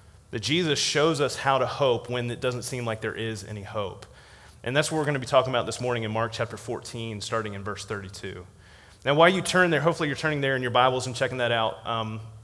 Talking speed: 250 wpm